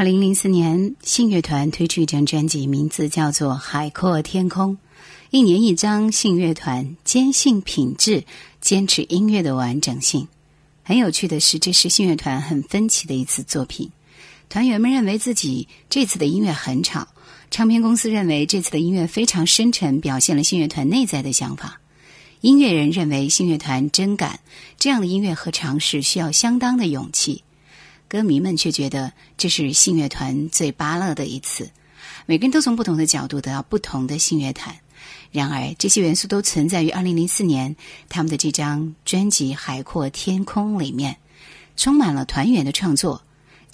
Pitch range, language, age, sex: 145-195 Hz, Chinese, 30-49, female